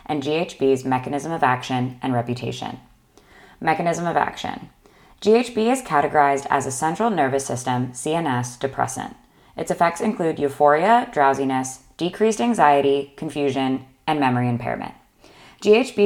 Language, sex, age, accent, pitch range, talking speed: English, female, 20-39, American, 135-175 Hz, 120 wpm